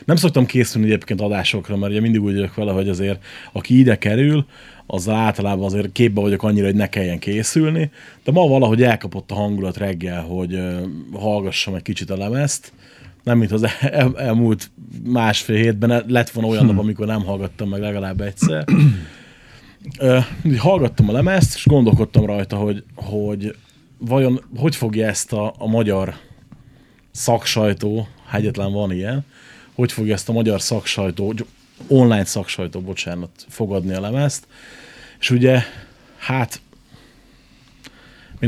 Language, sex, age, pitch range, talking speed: Hungarian, male, 30-49, 100-125 Hz, 145 wpm